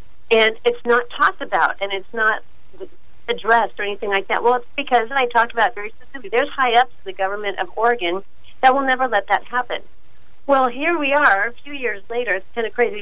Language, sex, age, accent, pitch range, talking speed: English, female, 40-59, American, 195-245 Hz, 225 wpm